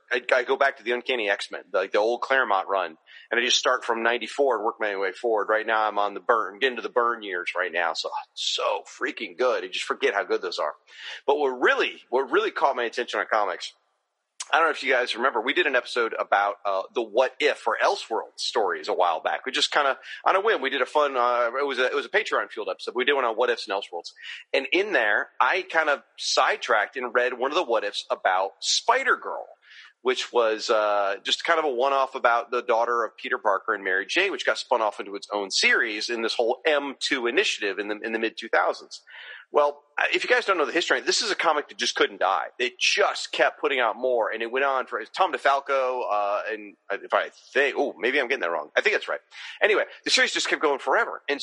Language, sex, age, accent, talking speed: English, male, 30-49, American, 250 wpm